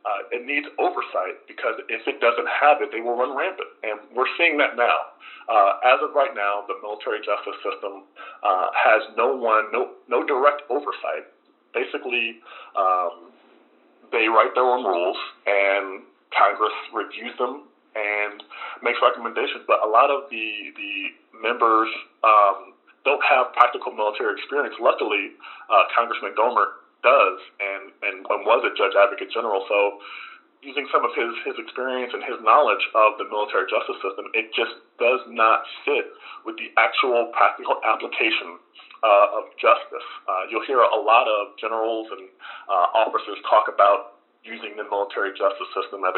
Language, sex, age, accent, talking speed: English, male, 40-59, American, 160 wpm